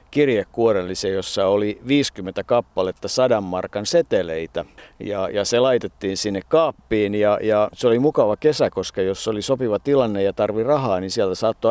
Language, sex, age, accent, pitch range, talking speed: Finnish, male, 50-69, native, 100-120 Hz, 160 wpm